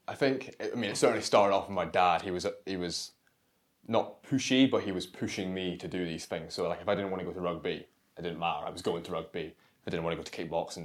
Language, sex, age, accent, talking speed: English, male, 20-39, British, 290 wpm